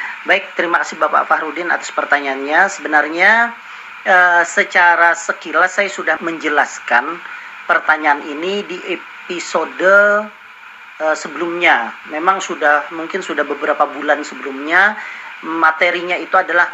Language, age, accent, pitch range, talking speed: Indonesian, 40-59, native, 155-215 Hz, 110 wpm